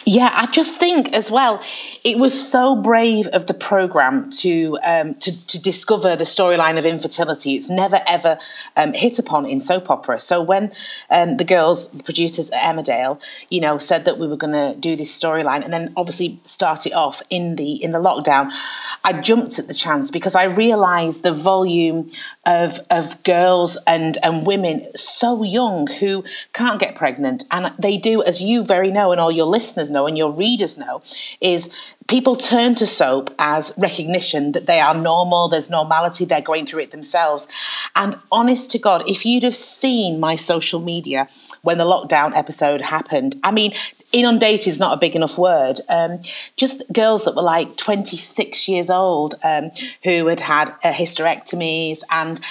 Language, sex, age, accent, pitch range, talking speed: English, female, 30-49, British, 160-210 Hz, 180 wpm